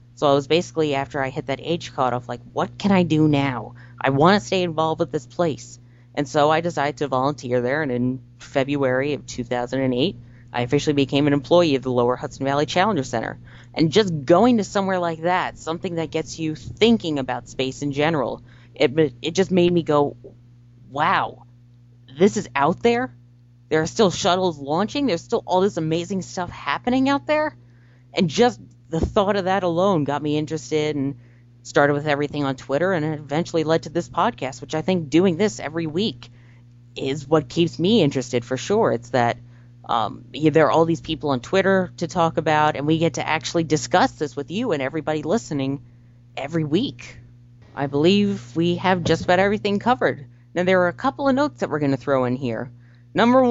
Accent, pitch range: American, 125-175 Hz